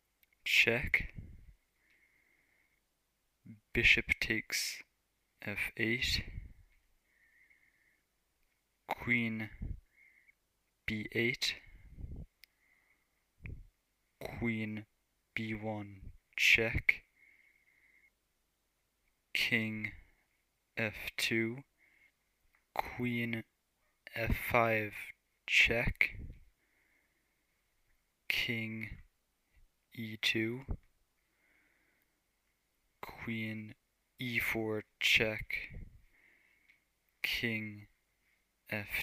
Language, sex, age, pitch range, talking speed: English, male, 20-39, 105-115 Hz, 35 wpm